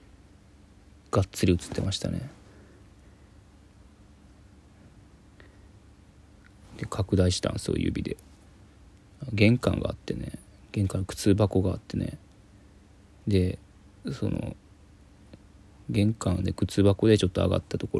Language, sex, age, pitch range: Japanese, male, 20-39, 90-100 Hz